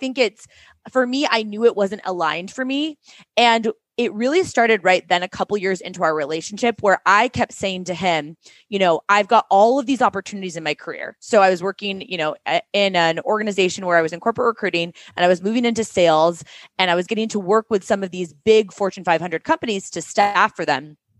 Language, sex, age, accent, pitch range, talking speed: English, female, 20-39, American, 185-250 Hz, 225 wpm